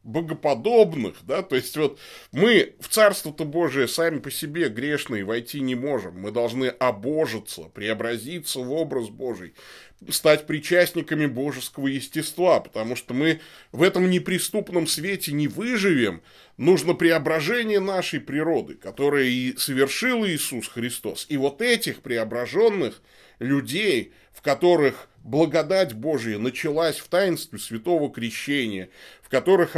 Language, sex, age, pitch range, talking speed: Russian, male, 20-39, 125-175 Hz, 125 wpm